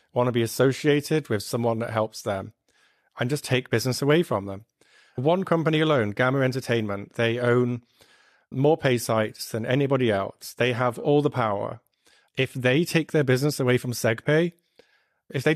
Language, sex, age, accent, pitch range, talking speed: English, male, 30-49, British, 120-145 Hz, 170 wpm